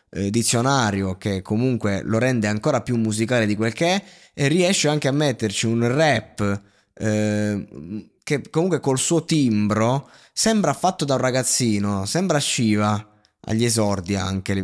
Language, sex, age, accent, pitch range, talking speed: Italian, male, 20-39, native, 105-140 Hz, 150 wpm